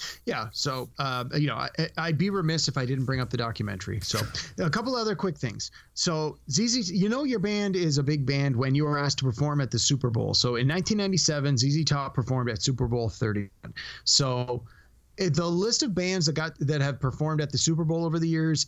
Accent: American